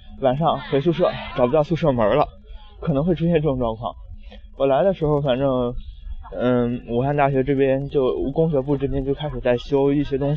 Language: Chinese